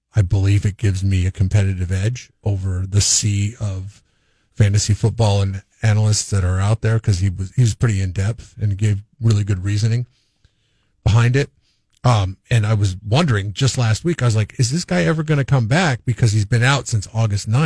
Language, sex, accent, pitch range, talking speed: English, male, American, 100-120 Hz, 205 wpm